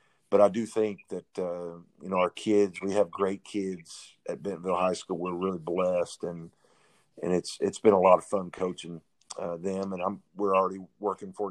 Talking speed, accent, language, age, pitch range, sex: 205 wpm, American, English, 50-69, 90-105 Hz, male